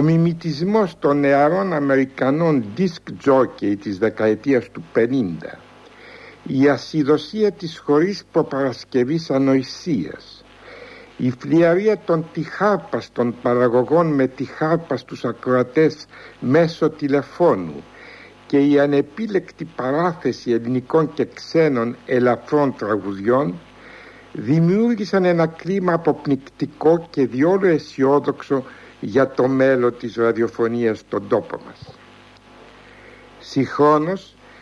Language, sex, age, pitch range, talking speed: Greek, male, 60-79, 120-160 Hz, 90 wpm